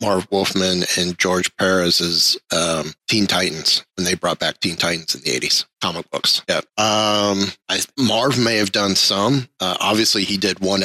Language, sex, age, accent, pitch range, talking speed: English, male, 30-49, American, 90-105 Hz, 175 wpm